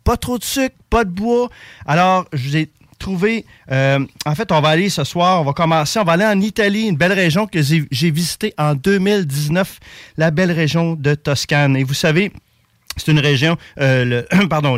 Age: 40-59